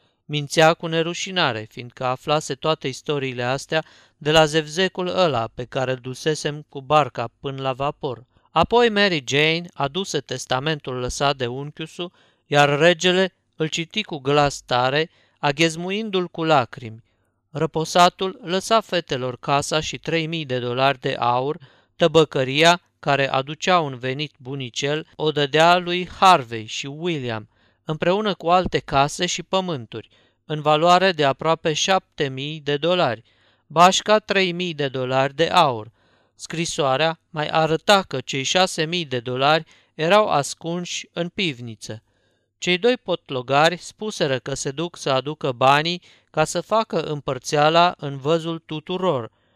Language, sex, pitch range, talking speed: Romanian, male, 135-175 Hz, 130 wpm